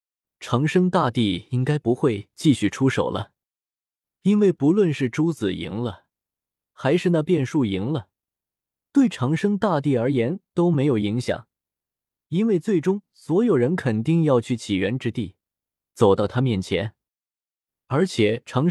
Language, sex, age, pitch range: Chinese, male, 20-39, 110-160 Hz